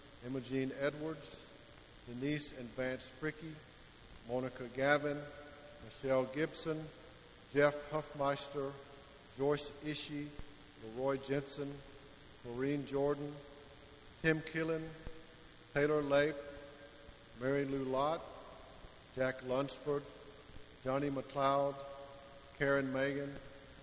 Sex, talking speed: male, 80 wpm